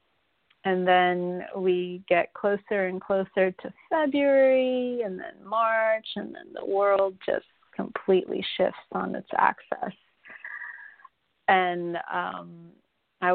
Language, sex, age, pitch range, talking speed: English, female, 30-49, 170-190 Hz, 110 wpm